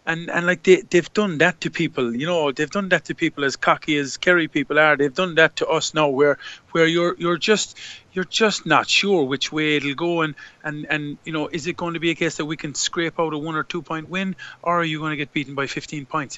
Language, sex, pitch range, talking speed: English, male, 140-165 Hz, 270 wpm